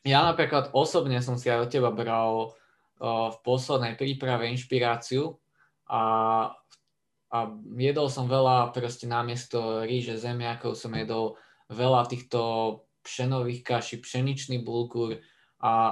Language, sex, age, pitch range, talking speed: Slovak, male, 20-39, 115-125 Hz, 120 wpm